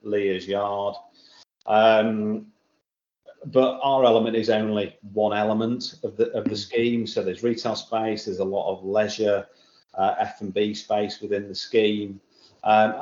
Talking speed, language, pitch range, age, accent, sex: 150 wpm, English, 95-115 Hz, 40-59, British, male